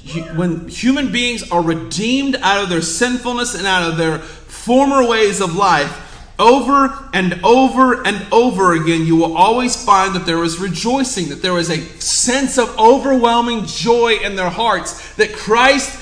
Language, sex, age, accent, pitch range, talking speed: English, male, 30-49, American, 200-290 Hz, 165 wpm